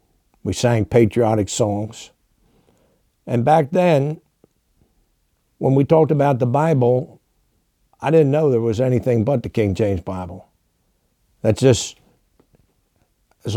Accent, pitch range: American, 110-135 Hz